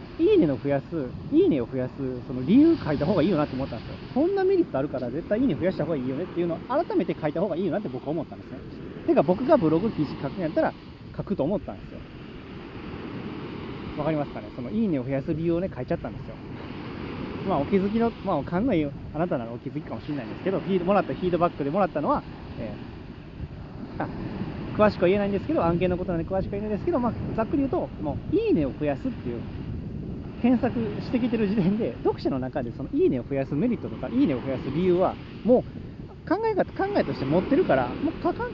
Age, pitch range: 30-49, 140-230 Hz